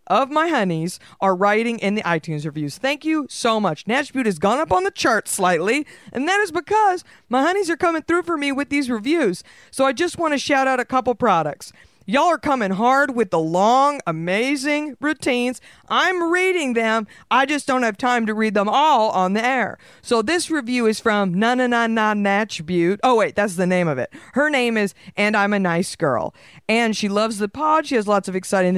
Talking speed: 210 wpm